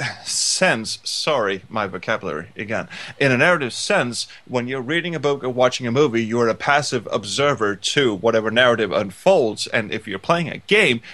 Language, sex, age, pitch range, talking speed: English, male, 30-49, 110-145 Hz, 170 wpm